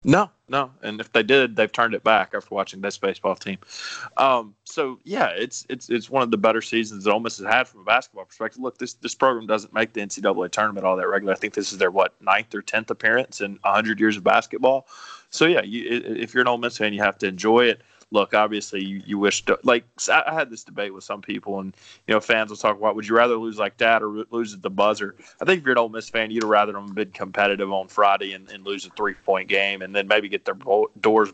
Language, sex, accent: English, male, American